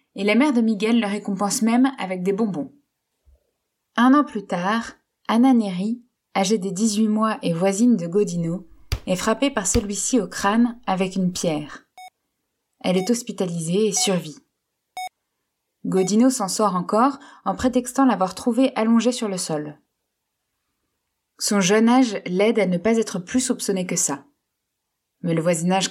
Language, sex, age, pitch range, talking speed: French, female, 20-39, 190-230 Hz, 155 wpm